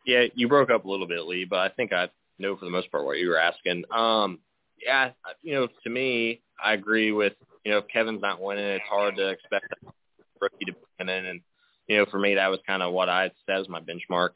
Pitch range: 90-105 Hz